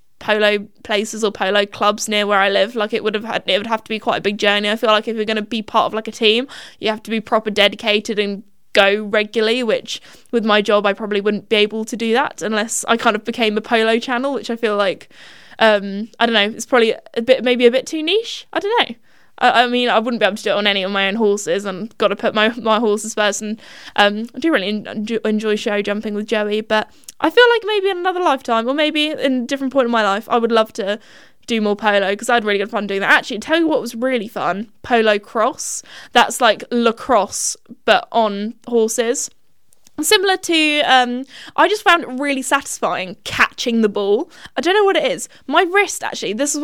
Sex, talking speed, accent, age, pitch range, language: female, 245 wpm, British, 10-29, 210-270 Hz, English